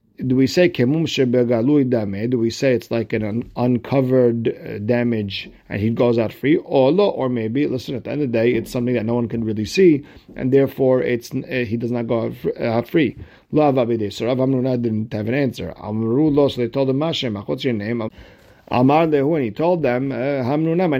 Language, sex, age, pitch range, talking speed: English, male, 50-69, 115-145 Hz, 190 wpm